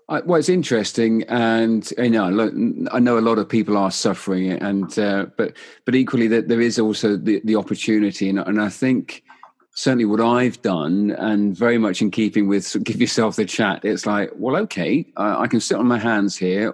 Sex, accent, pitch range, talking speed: male, British, 105-120 Hz, 195 wpm